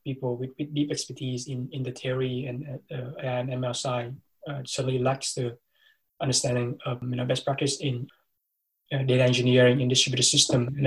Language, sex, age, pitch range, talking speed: English, male, 20-39, 125-140 Hz, 175 wpm